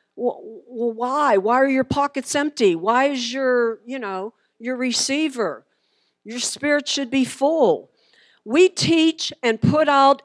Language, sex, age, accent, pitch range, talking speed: English, female, 50-69, American, 235-295 Hz, 140 wpm